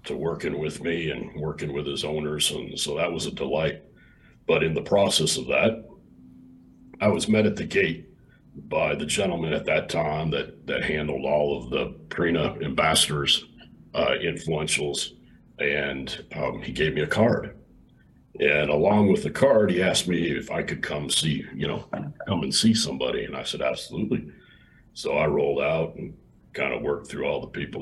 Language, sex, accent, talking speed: English, male, American, 185 wpm